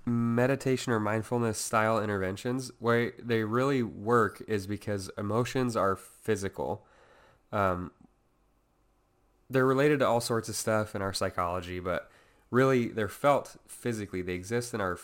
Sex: male